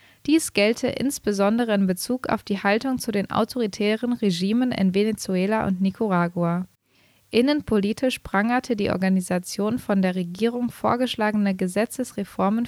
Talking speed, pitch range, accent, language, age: 120 wpm, 190-235 Hz, German, German, 20-39